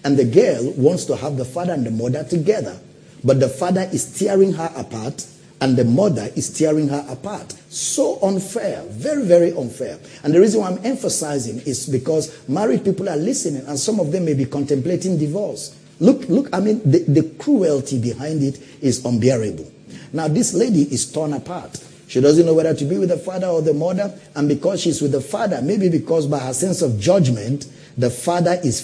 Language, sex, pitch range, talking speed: English, male, 130-165 Hz, 200 wpm